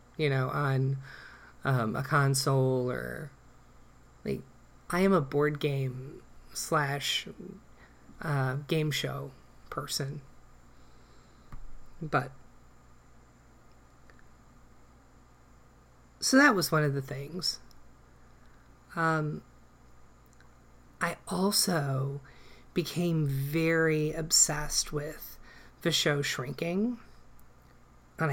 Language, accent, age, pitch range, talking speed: English, American, 30-49, 135-160 Hz, 80 wpm